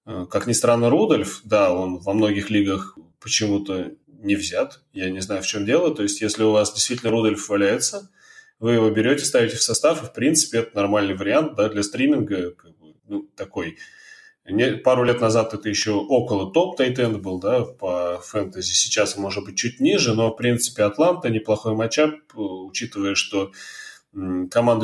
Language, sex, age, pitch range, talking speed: Russian, male, 20-39, 100-120 Hz, 165 wpm